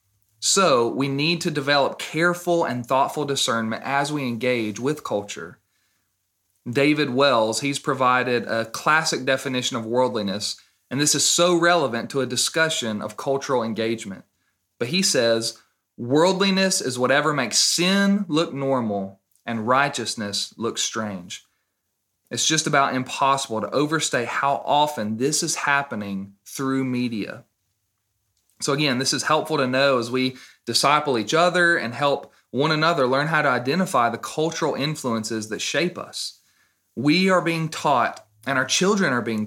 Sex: male